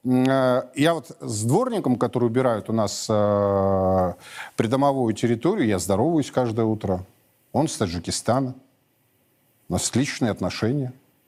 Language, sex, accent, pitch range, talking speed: Russian, male, native, 115-155 Hz, 115 wpm